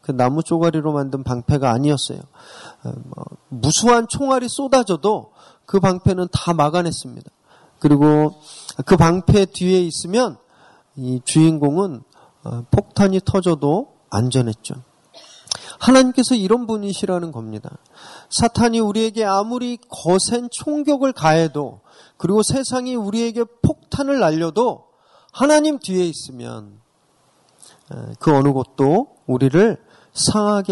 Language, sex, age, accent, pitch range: Korean, male, 40-59, native, 140-200 Hz